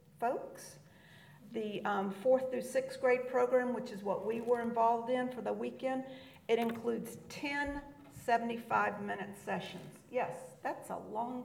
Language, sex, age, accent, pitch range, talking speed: English, female, 50-69, American, 200-250 Hz, 140 wpm